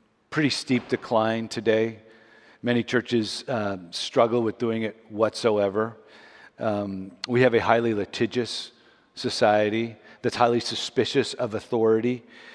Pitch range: 95-115 Hz